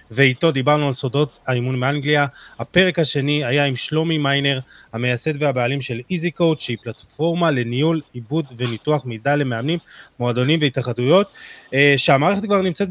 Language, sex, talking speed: Hebrew, male, 135 wpm